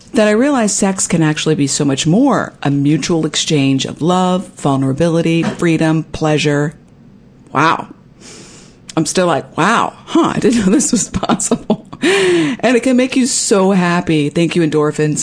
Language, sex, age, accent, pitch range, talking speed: English, female, 50-69, American, 155-210 Hz, 160 wpm